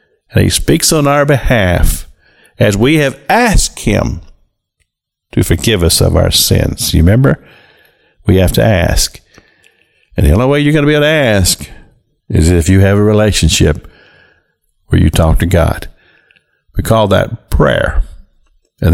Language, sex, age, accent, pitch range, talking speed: English, male, 50-69, American, 85-115 Hz, 160 wpm